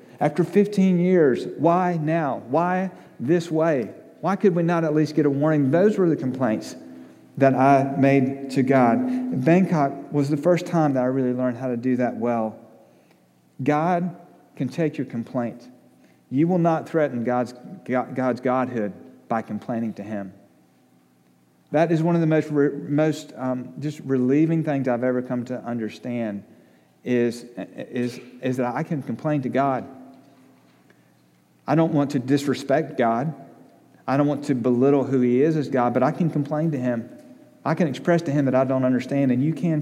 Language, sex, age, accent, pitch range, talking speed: English, male, 40-59, American, 120-150 Hz, 175 wpm